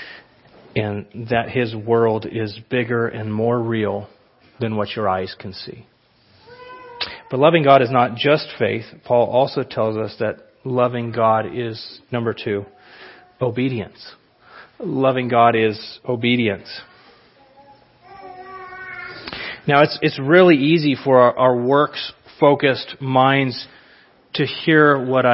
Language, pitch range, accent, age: English, 120-170 Hz, American, 30-49